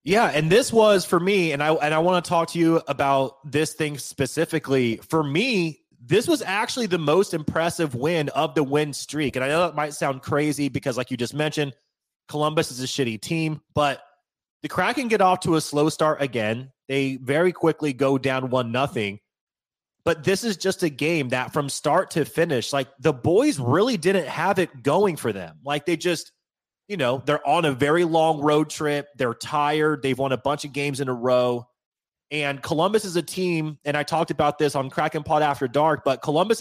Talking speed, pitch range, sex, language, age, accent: 210 wpm, 135-165 Hz, male, English, 30-49, American